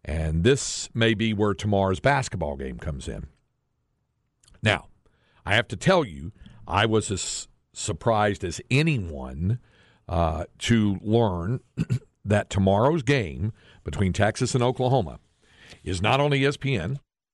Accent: American